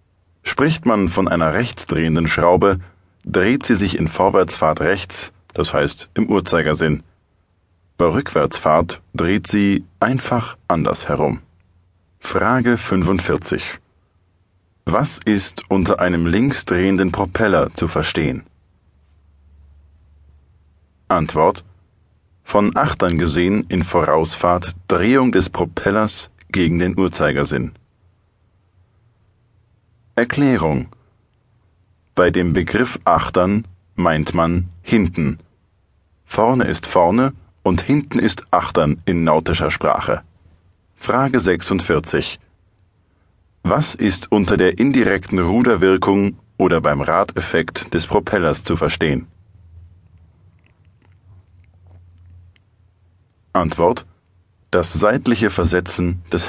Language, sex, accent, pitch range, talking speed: German, male, German, 85-100 Hz, 90 wpm